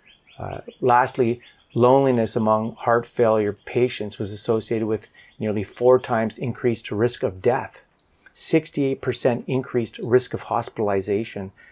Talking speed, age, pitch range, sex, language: 115 wpm, 30-49, 105-125 Hz, male, English